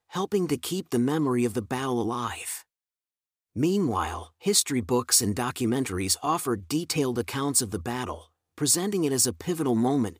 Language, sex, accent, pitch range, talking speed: English, male, American, 115-145 Hz, 155 wpm